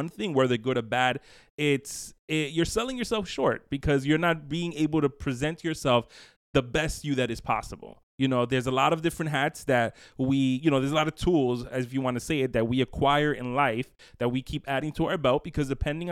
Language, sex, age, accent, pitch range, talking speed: English, male, 20-39, American, 130-160 Hz, 225 wpm